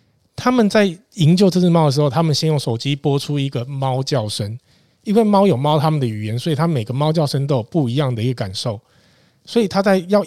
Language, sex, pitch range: Chinese, male, 125-160 Hz